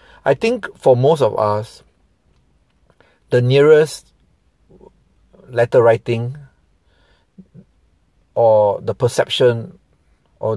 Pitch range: 100-140 Hz